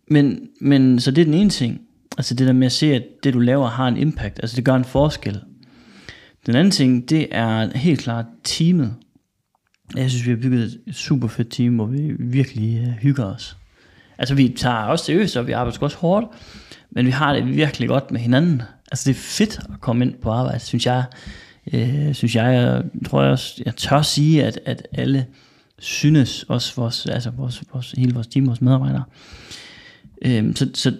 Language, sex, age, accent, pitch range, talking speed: Danish, male, 30-49, native, 120-140 Hz, 195 wpm